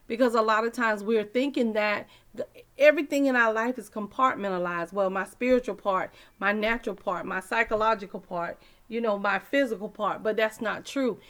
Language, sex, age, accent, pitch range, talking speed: English, female, 40-59, American, 210-255 Hz, 175 wpm